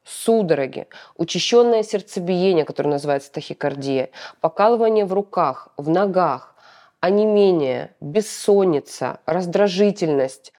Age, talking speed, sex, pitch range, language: 20-39, 80 wpm, female, 160-205 Hz, Russian